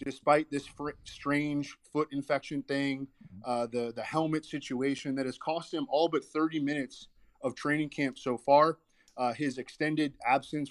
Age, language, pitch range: 20-39, English, 130-155 Hz